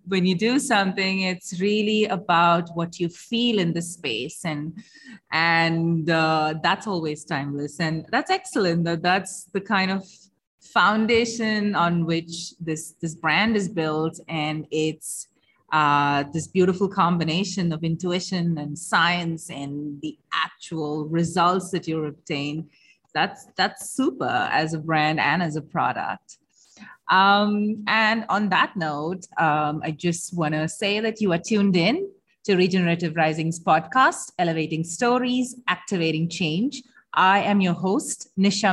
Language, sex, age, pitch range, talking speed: English, female, 30-49, 160-210 Hz, 140 wpm